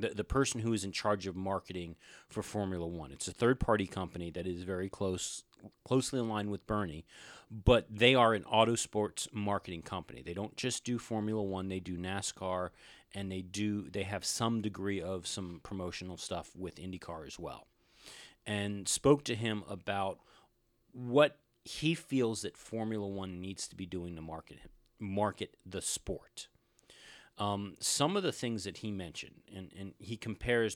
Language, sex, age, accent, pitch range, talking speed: English, male, 40-59, American, 95-115 Hz, 170 wpm